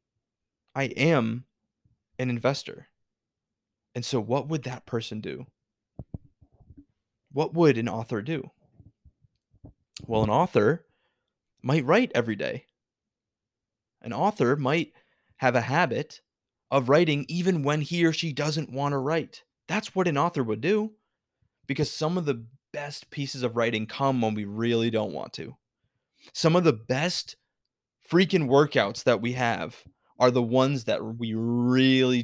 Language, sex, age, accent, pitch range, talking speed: English, male, 20-39, American, 115-145 Hz, 140 wpm